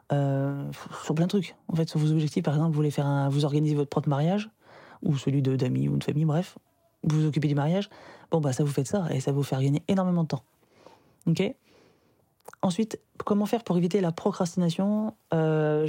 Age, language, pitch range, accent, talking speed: 20-39, French, 145-180 Hz, French, 215 wpm